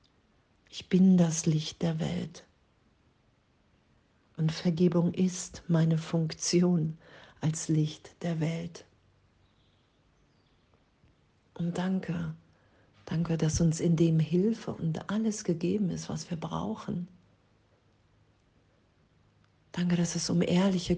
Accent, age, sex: German, 50-69, female